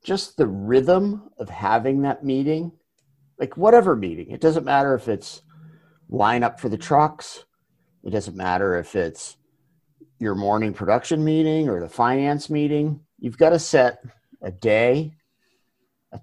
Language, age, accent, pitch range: English, 50-69, American, 110-150 Hz